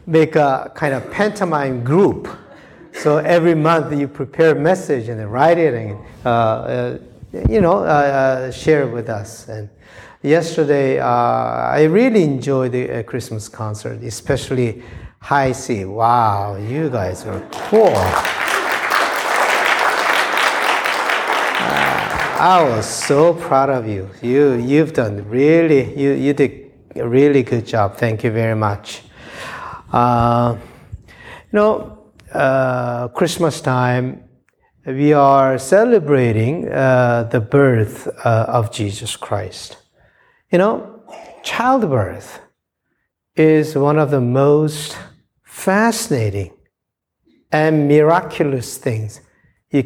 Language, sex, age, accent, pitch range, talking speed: English, male, 50-69, Japanese, 115-150 Hz, 115 wpm